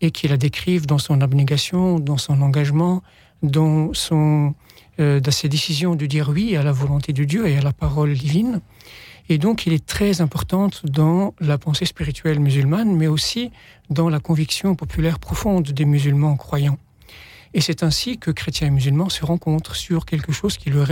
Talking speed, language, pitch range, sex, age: 185 wpm, French, 140-170 Hz, male, 60-79